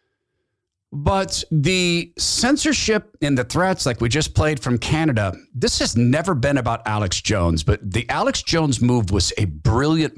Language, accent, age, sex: English, American, 50-69, male